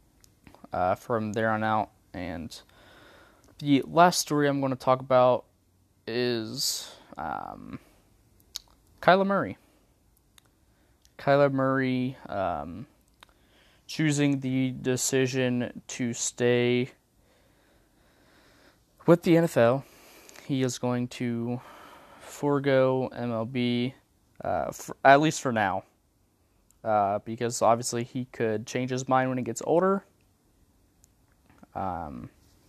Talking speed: 95 wpm